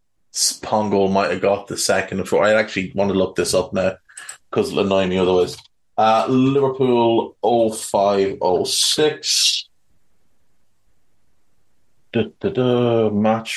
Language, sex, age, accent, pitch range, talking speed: English, male, 30-49, Irish, 105-140 Hz, 115 wpm